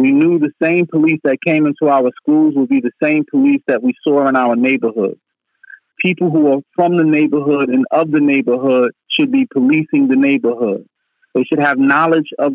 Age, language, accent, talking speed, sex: 40-59, English, American, 195 wpm, male